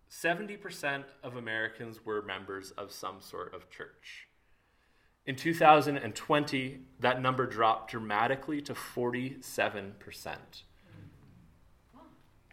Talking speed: 80 wpm